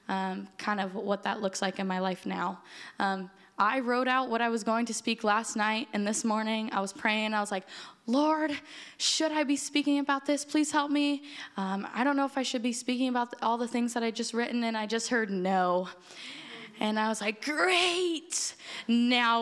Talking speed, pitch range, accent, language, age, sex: 215 wpm, 200-240 Hz, American, English, 10-29, female